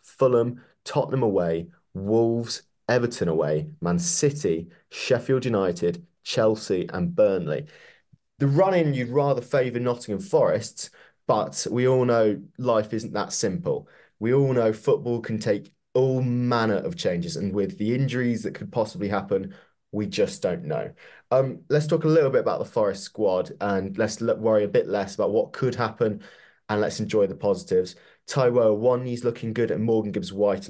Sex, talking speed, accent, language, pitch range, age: male, 160 wpm, British, English, 110-155 Hz, 20-39